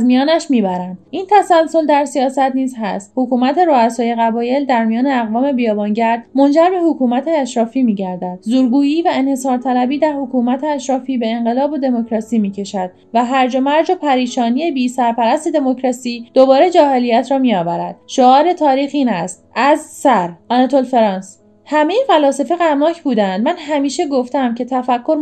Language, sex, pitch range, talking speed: Persian, female, 230-290 Hz, 145 wpm